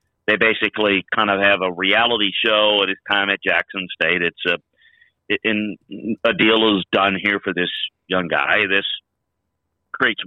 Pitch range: 95-110 Hz